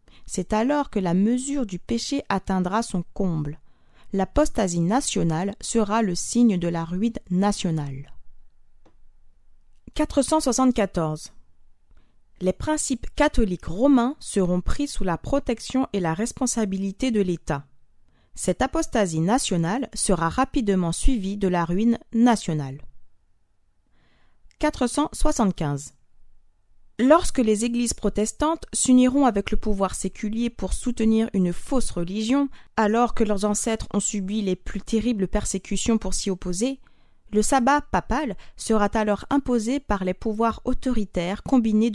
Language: English